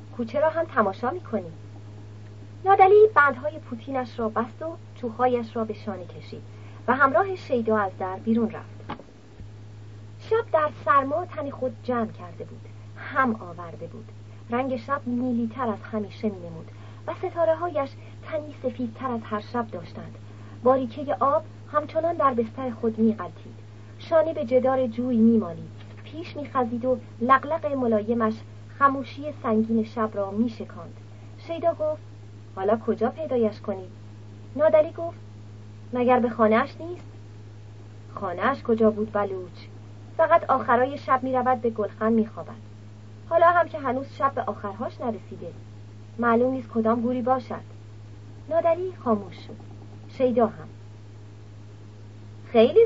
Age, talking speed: 30-49, 130 wpm